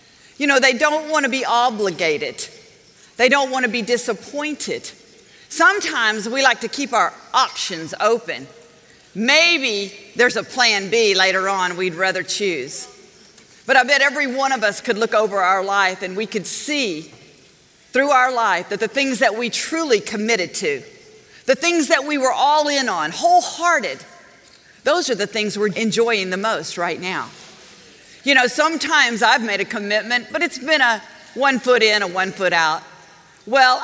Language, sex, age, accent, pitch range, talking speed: English, female, 40-59, American, 200-280 Hz, 170 wpm